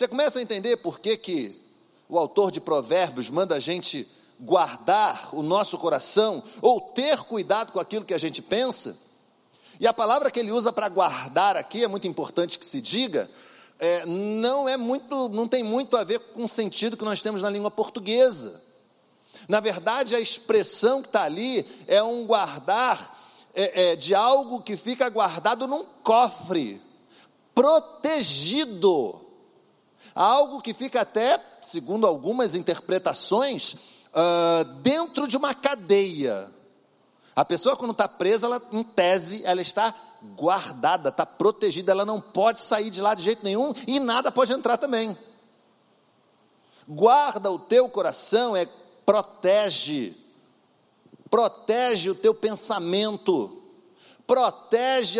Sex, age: male, 50-69